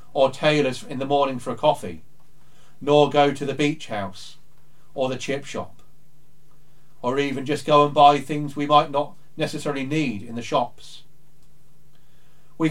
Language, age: English, 40-59